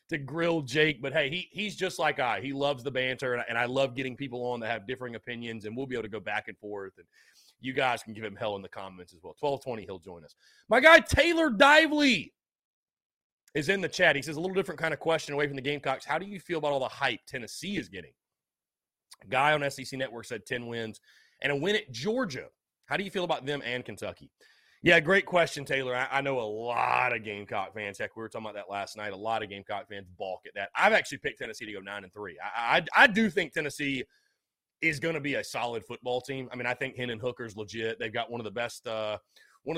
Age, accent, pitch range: 30-49, American, 115-155 Hz